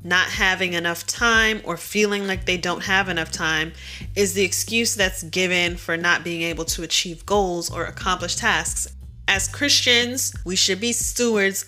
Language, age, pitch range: English, 30-49, 160-190 Hz